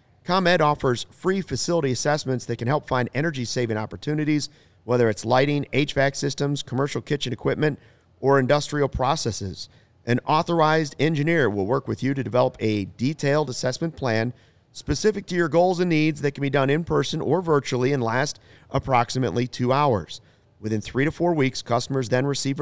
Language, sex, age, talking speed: English, male, 40-59, 165 wpm